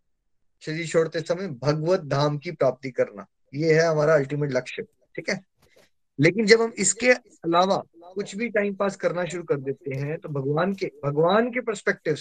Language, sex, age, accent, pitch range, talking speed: Hindi, male, 20-39, native, 155-200 Hz, 170 wpm